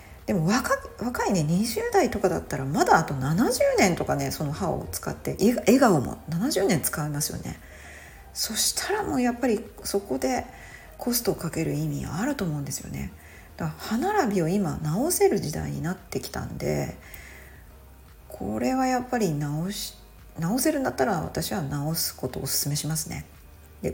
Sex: female